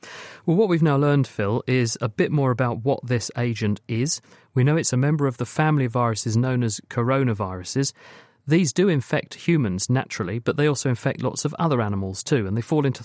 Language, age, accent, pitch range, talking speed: English, 40-59, British, 110-140 Hz, 210 wpm